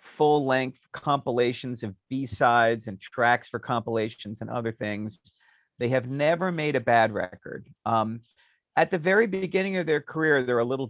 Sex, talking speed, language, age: male, 165 wpm, English, 40-59